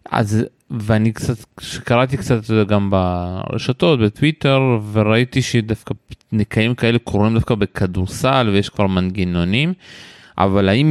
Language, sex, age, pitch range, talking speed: Hebrew, male, 20-39, 105-125 Hz, 120 wpm